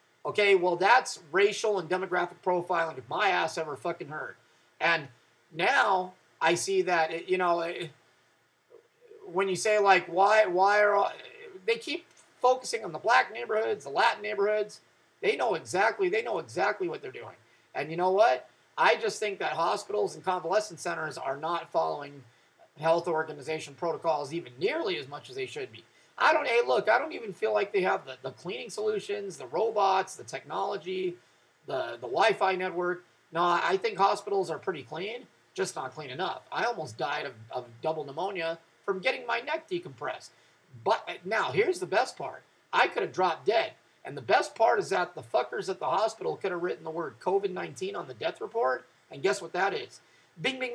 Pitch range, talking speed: 165-255 Hz, 185 wpm